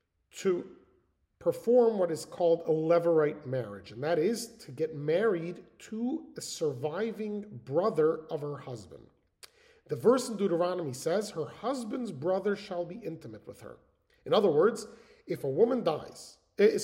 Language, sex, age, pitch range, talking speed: English, male, 40-59, 150-225 Hz, 145 wpm